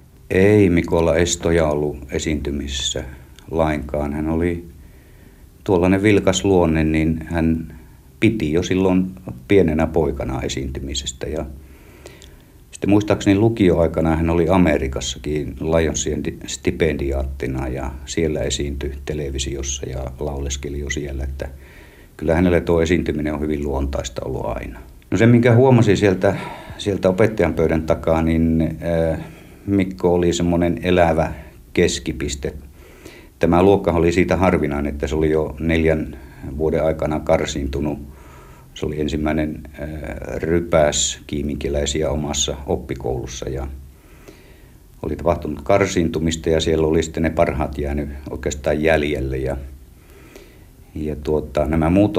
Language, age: Finnish, 60-79